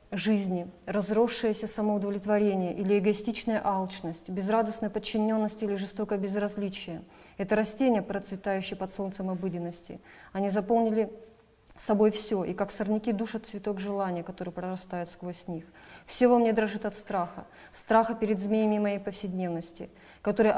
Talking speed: 130 wpm